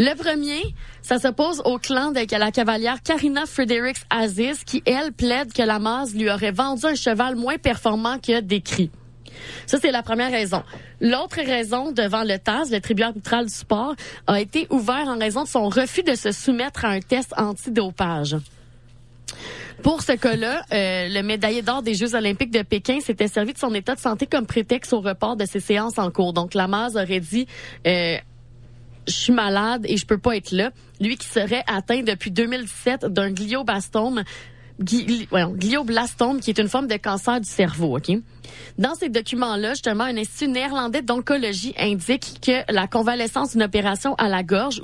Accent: Canadian